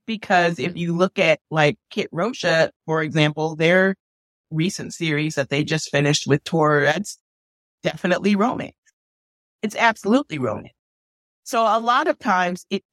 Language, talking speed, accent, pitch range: English, 145 wpm, American, 165-205 Hz